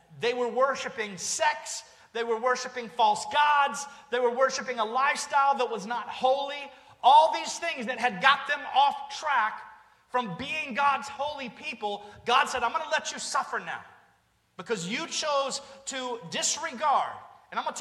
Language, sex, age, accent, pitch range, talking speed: English, male, 30-49, American, 245-290 Hz, 170 wpm